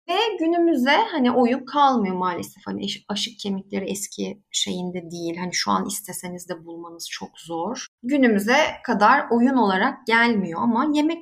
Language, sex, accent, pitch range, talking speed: Turkish, female, native, 190-270 Hz, 145 wpm